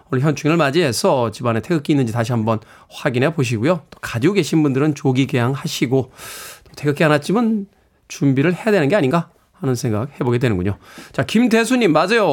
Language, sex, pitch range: Korean, male, 130-180 Hz